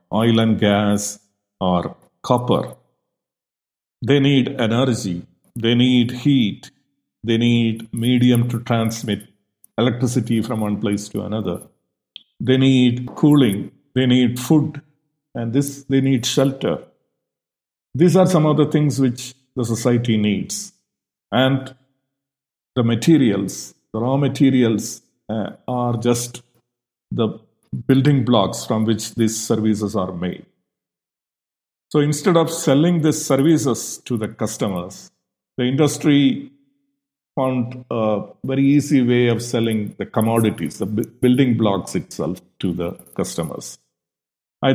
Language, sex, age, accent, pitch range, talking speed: English, male, 50-69, Indian, 110-135 Hz, 120 wpm